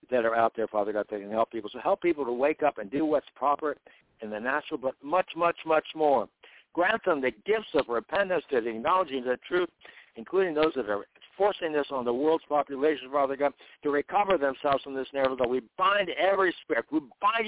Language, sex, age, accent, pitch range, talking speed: English, male, 60-79, American, 130-185 Hz, 220 wpm